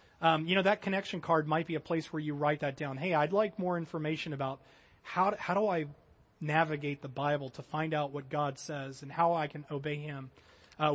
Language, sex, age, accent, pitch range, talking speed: English, male, 30-49, American, 145-170 Hz, 230 wpm